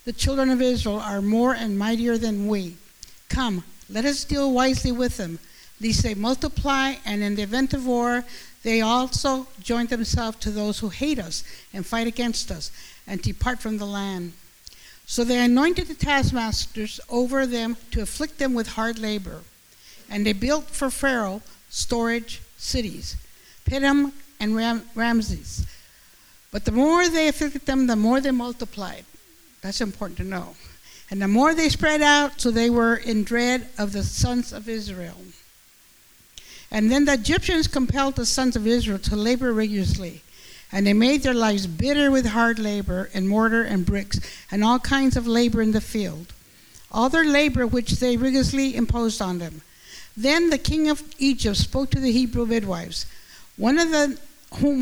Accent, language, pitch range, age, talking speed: American, English, 215-265 Hz, 60-79, 170 wpm